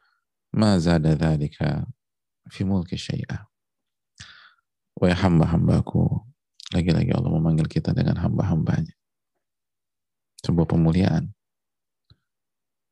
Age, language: 40-59, Indonesian